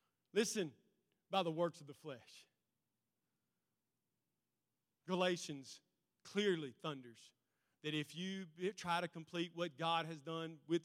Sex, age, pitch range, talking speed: male, 40-59, 165-225 Hz, 115 wpm